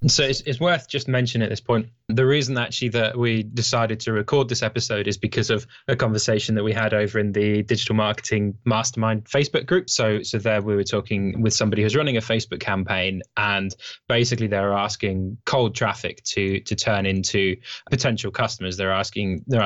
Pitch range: 100-120 Hz